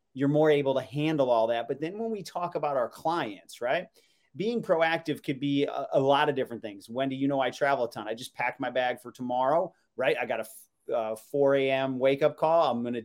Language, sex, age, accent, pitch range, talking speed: English, male, 30-49, American, 125-150 Hz, 235 wpm